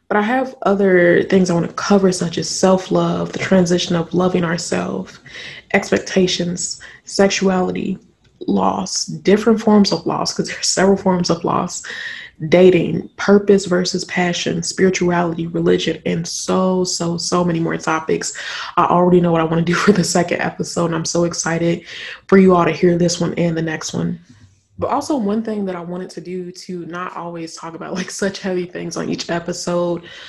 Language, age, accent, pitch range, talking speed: English, 20-39, American, 170-195 Hz, 180 wpm